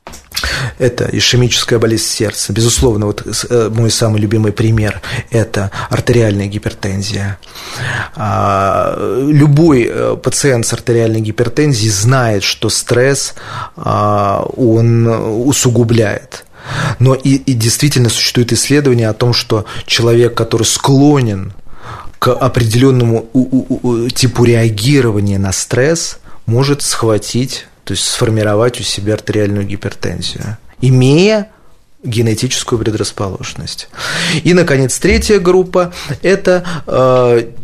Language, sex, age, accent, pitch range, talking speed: Russian, male, 30-49, native, 110-135 Hz, 90 wpm